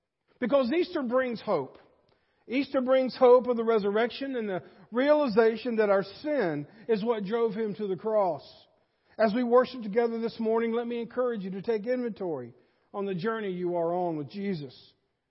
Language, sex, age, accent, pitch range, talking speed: English, male, 50-69, American, 205-250 Hz, 175 wpm